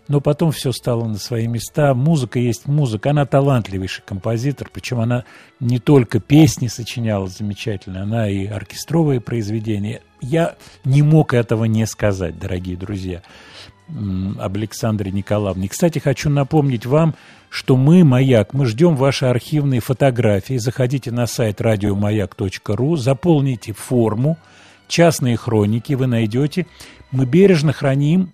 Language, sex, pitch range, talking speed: Russian, male, 105-145 Hz, 125 wpm